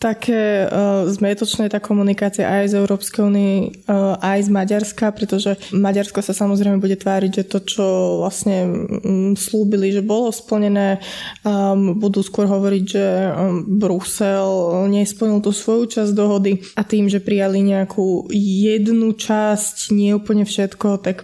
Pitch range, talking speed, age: 195-210 Hz, 145 wpm, 20-39